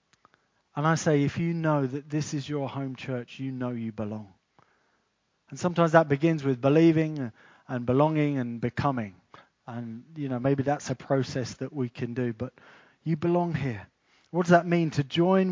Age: 30-49